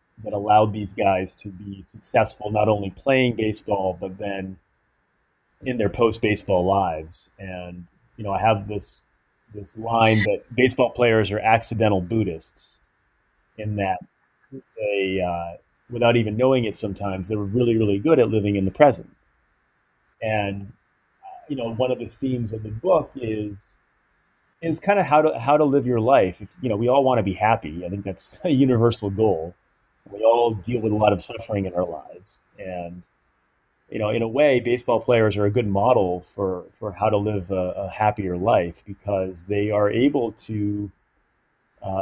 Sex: male